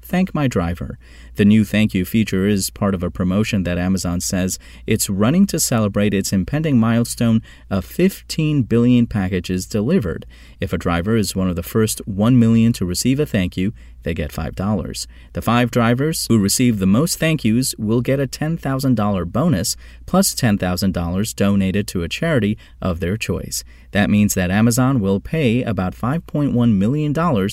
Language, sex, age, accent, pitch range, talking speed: English, male, 30-49, American, 90-120 Hz, 170 wpm